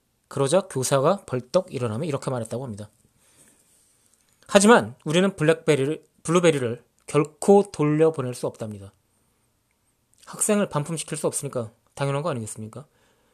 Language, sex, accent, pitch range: Korean, male, native, 125-175 Hz